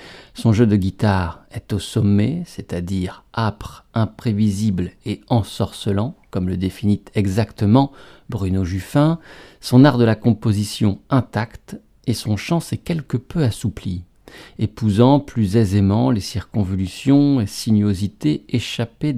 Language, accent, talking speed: French, French, 120 wpm